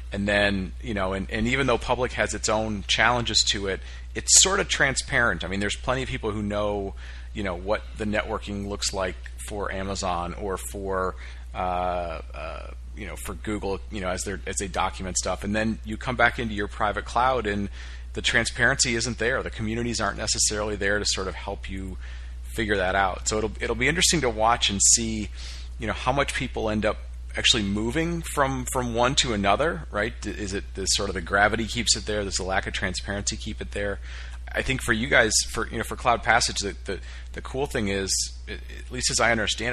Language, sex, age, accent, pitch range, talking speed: English, male, 40-59, American, 85-110 Hz, 215 wpm